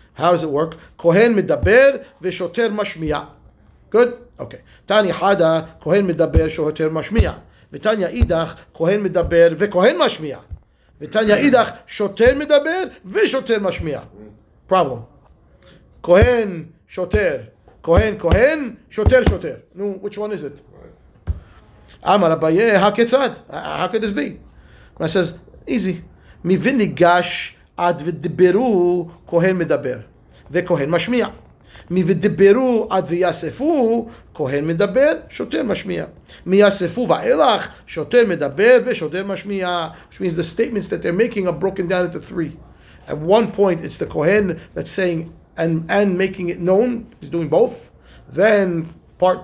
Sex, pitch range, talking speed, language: male, 170-230 Hz, 105 wpm, English